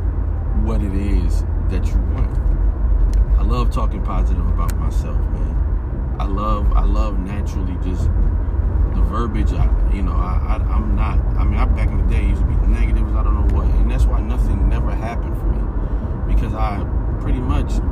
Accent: American